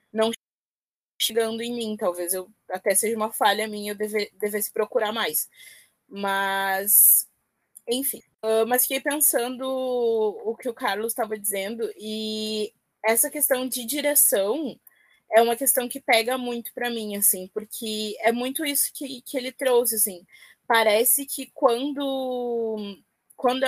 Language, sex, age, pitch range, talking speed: Portuguese, female, 20-39, 215-265 Hz, 140 wpm